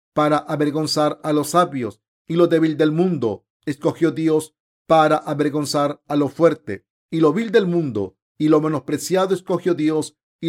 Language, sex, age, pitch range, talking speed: Spanish, male, 50-69, 140-170 Hz, 160 wpm